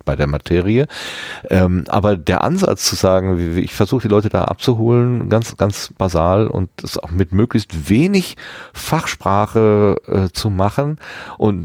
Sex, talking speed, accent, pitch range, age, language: male, 160 wpm, German, 85-110 Hz, 40-59, German